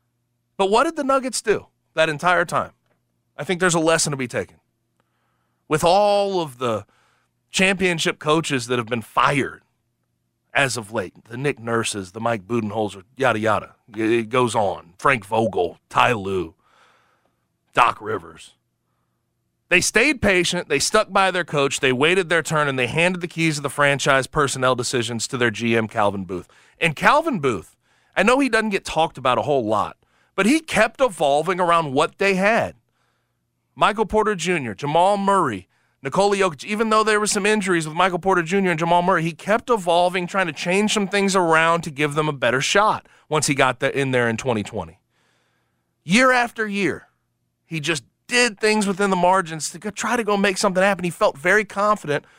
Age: 30-49